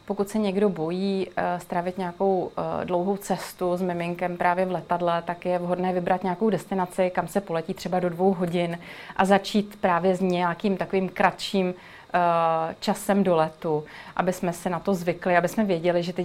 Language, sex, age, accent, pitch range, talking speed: Czech, female, 30-49, native, 175-200 Hz, 175 wpm